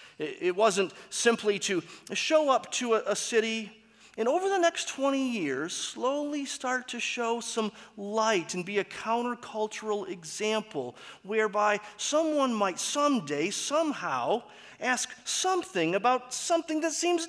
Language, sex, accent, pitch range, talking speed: English, male, American, 140-230 Hz, 130 wpm